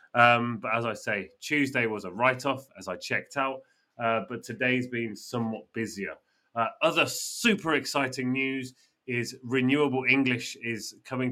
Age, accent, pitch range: 30-49, British, 110-130 Hz